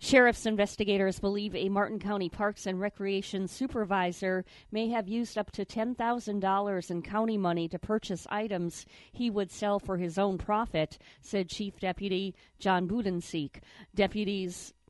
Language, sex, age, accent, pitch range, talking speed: English, female, 40-59, American, 180-220 Hz, 140 wpm